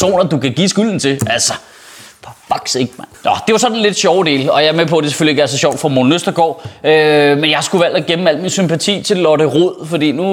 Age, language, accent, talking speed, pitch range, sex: 30-49, Danish, native, 265 wpm, 165-240 Hz, male